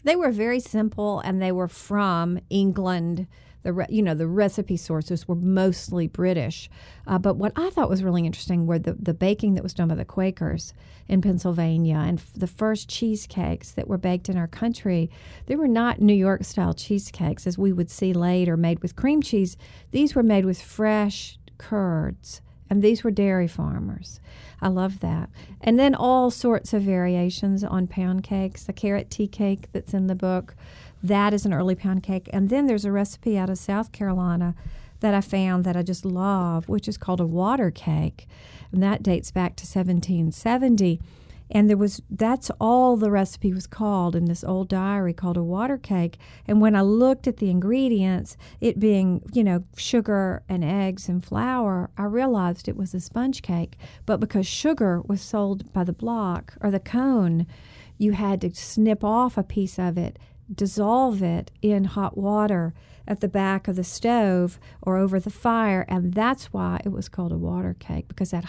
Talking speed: 190 wpm